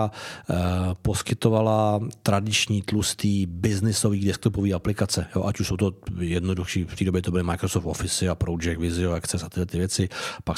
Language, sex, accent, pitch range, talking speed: Czech, male, native, 95-105 Hz, 150 wpm